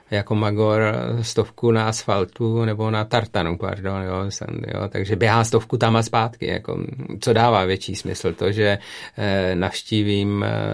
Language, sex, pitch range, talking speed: Czech, male, 100-110 Hz, 125 wpm